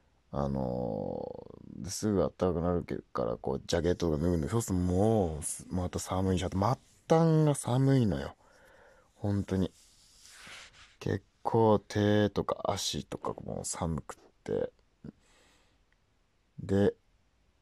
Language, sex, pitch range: Japanese, male, 80-105 Hz